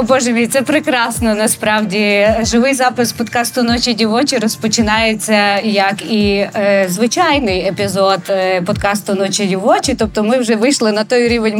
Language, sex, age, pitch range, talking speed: Ukrainian, female, 20-39, 200-250 Hz, 140 wpm